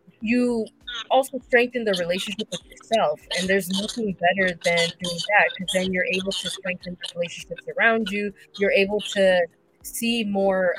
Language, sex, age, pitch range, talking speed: English, female, 20-39, 180-215 Hz, 160 wpm